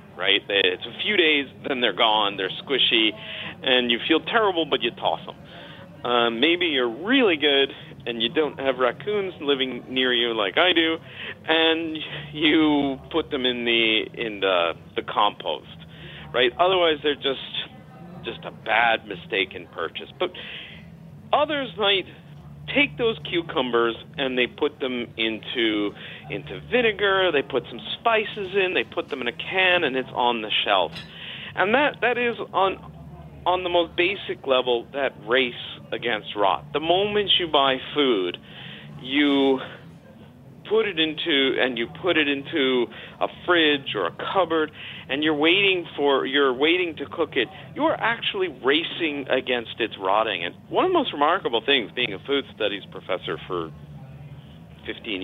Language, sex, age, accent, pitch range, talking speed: English, male, 40-59, American, 130-190 Hz, 160 wpm